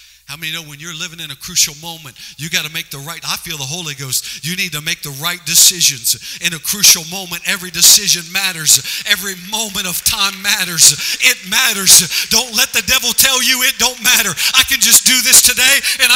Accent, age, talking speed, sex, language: American, 50-69, 210 wpm, male, English